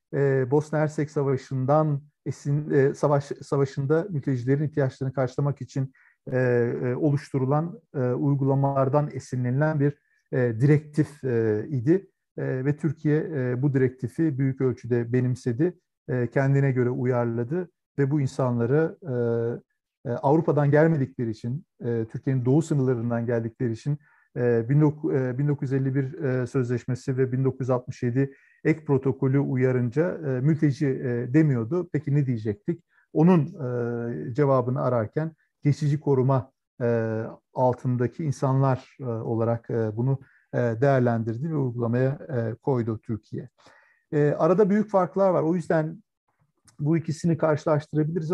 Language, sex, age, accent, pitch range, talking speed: Turkish, male, 50-69, native, 125-150 Hz, 85 wpm